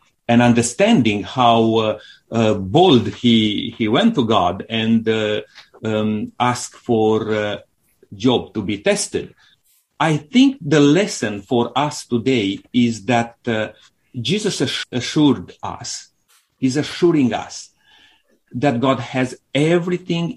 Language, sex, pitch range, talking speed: English, male, 115-145 Hz, 120 wpm